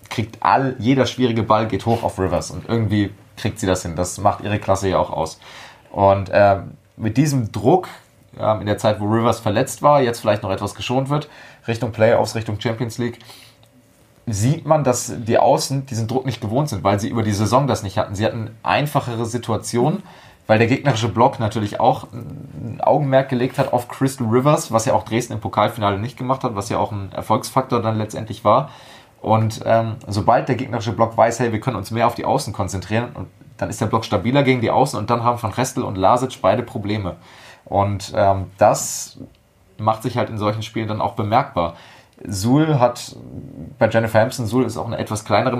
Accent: German